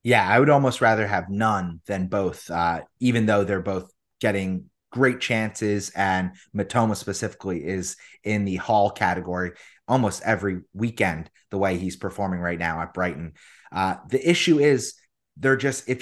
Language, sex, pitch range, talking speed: English, male, 100-125 Hz, 160 wpm